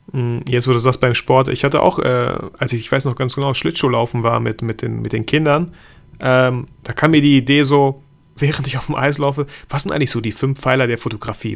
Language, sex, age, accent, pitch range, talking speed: German, male, 30-49, German, 115-145 Hz, 240 wpm